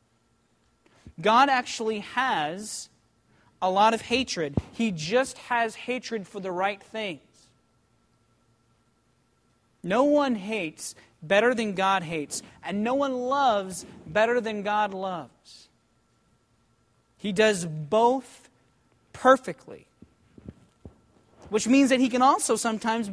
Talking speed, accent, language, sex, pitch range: 105 wpm, American, English, male, 160-245 Hz